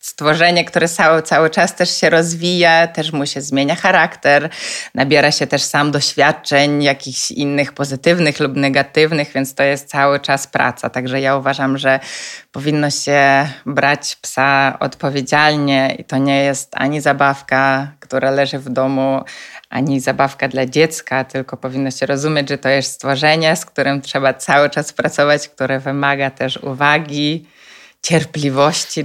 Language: Polish